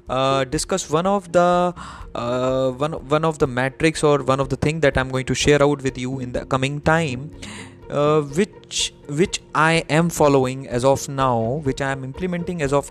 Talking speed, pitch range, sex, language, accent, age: 200 wpm, 135-160 Hz, male, Hindi, native, 20-39